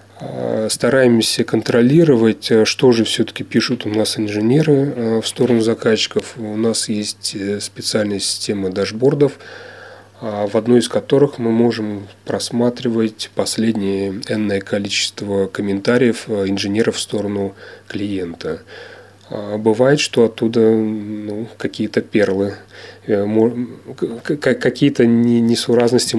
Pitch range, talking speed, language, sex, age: 100-120 Hz, 90 wpm, Russian, male, 30-49